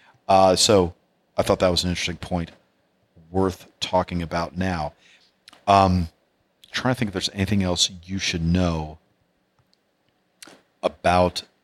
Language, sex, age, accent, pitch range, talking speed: English, male, 40-59, American, 85-100 Hz, 130 wpm